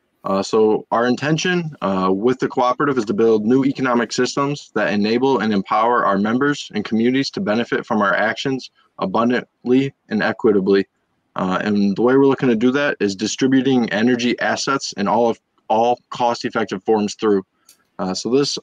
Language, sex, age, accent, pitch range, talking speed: English, male, 20-39, American, 105-125 Hz, 175 wpm